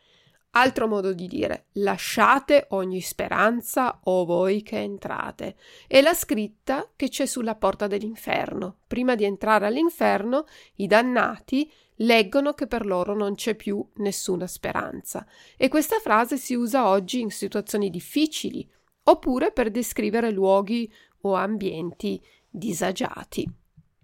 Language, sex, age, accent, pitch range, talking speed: Italian, female, 40-59, native, 200-265 Hz, 125 wpm